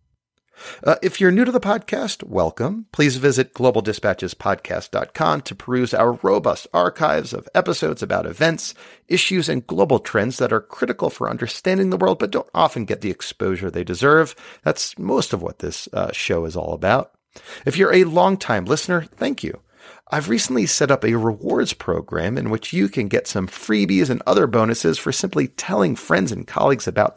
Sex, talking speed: male, 175 wpm